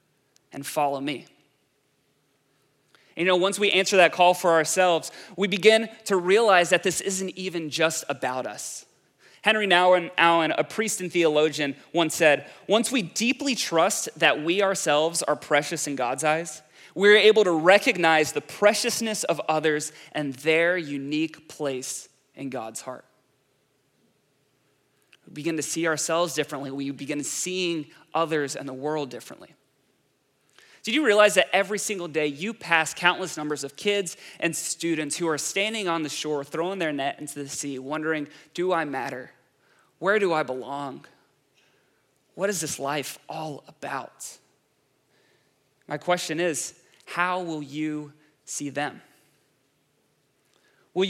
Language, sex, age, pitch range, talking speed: English, male, 20-39, 145-190 Hz, 145 wpm